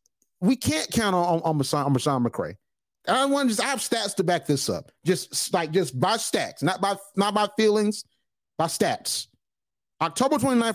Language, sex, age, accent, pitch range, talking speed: English, male, 30-49, American, 155-225 Hz, 190 wpm